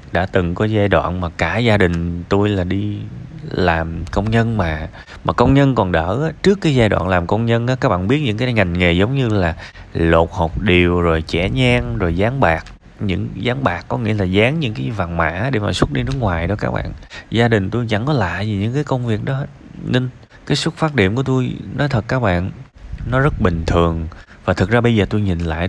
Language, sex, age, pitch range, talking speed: Vietnamese, male, 20-39, 90-130 Hz, 245 wpm